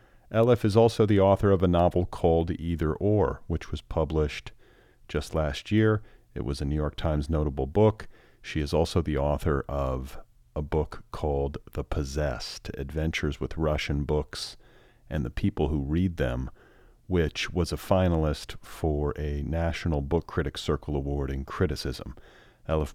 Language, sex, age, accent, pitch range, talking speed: English, male, 40-59, American, 75-85 Hz, 155 wpm